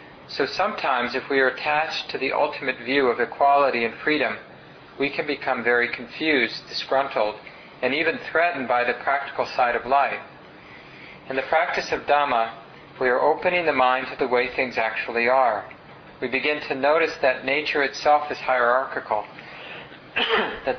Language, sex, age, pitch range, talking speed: English, male, 40-59, 125-145 Hz, 160 wpm